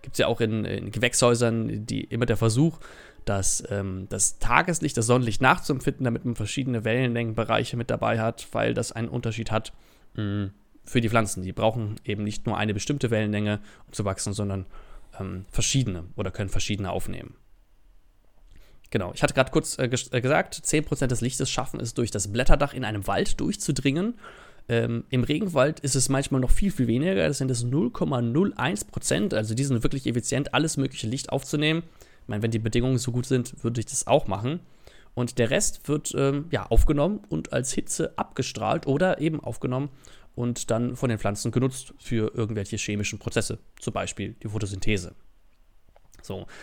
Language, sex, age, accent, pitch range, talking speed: German, male, 20-39, German, 105-135 Hz, 175 wpm